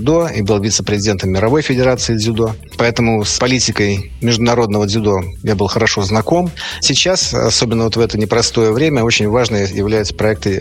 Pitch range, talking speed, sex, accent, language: 105-120 Hz, 155 wpm, male, native, Russian